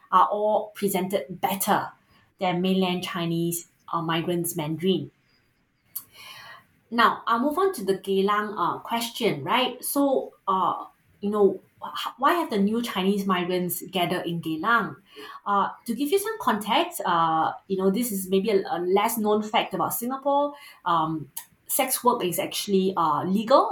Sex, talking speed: female, 145 wpm